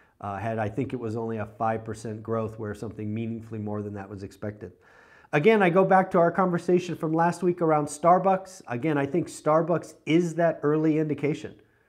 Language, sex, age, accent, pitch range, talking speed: English, male, 40-59, American, 125-175 Hz, 190 wpm